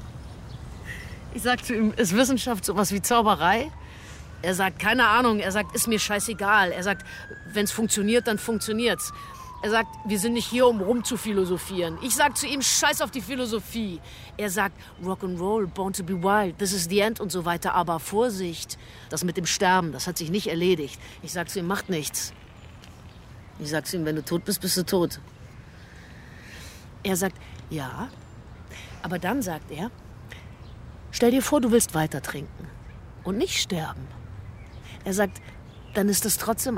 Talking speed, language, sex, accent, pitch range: 175 wpm, German, female, German, 170-235 Hz